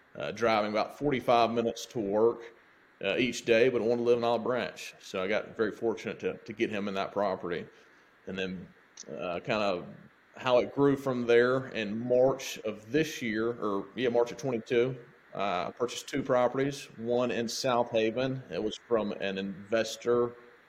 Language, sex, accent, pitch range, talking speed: English, male, American, 105-125 Hz, 185 wpm